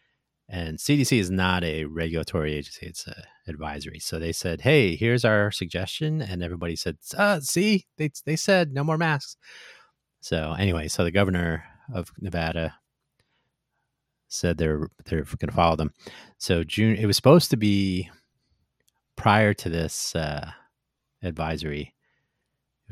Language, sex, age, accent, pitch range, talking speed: English, male, 30-49, American, 80-110 Hz, 145 wpm